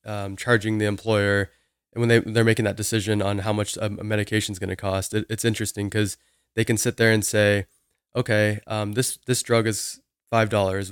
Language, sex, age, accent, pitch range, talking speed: English, male, 20-39, American, 100-115 Hz, 210 wpm